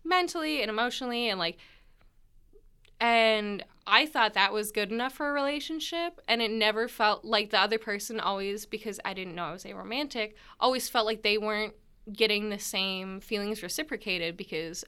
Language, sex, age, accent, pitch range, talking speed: English, female, 20-39, American, 190-235 Hz, 175 wpm